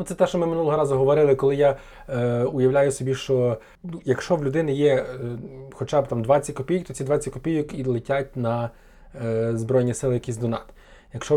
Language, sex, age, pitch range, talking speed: Ukrainian, male, 20-39, 120-140 Hz, 185 wpm